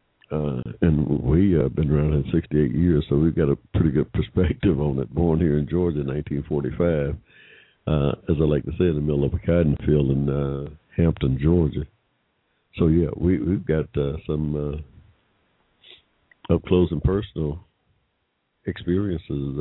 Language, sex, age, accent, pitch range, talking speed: English, male, 60-79, American, 70-85 Hz, 145 wpm